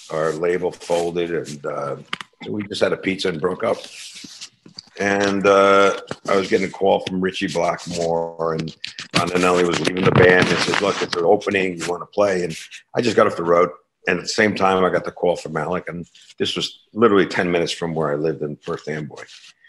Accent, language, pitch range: American, English, 85-115 Hz